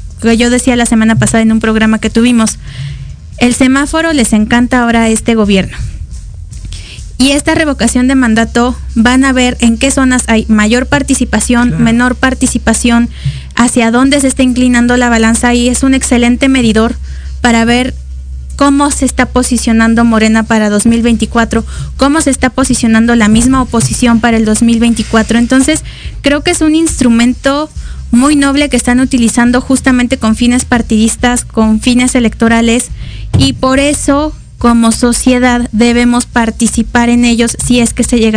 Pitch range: 225-260 Hz